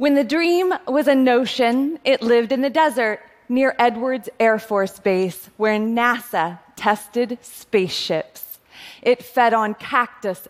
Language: Korean